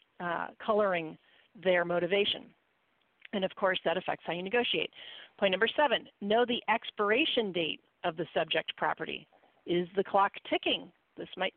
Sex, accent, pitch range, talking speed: female, American, 180-225 Hz, 150 wpm